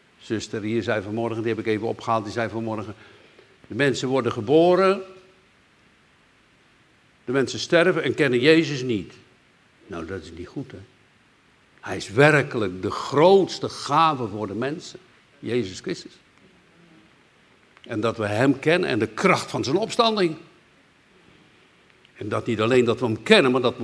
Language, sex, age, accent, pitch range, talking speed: Dutch, male, 60-79, Dutch, 115-155 Hz, 155 wpm